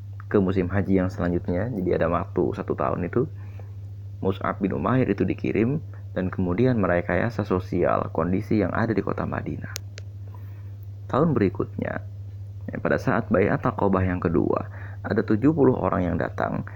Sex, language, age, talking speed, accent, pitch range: male, Indonesian, 30-49, 140 wpm, native, 95-110 Hz